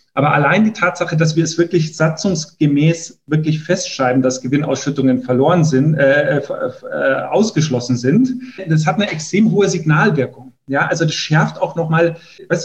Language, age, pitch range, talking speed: German, 40-59, 140-175 Hz, 145 wpm